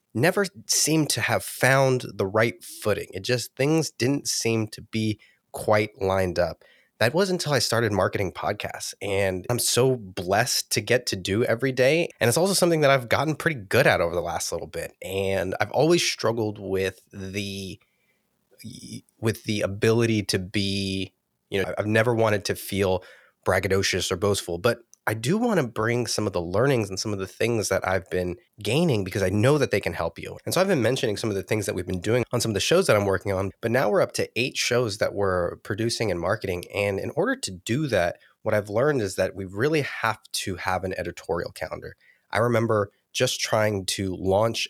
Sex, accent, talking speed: male, American, 210 wpm